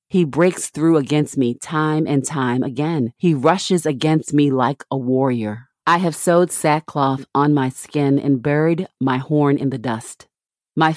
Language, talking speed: English, 170 wpm